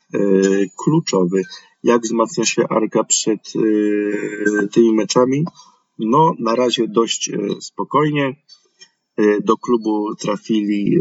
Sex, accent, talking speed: male, native, 85 wpm